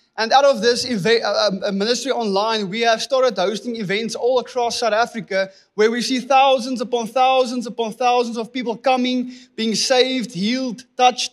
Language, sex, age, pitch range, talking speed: English, male, 20-39, 215-250 Hz, 170 wpm